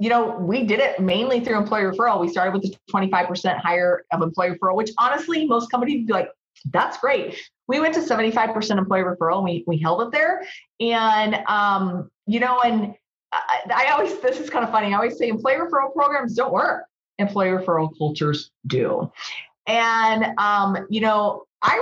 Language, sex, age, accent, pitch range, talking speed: English, female, 30-49, American, 175-230 Hz, 190 wpm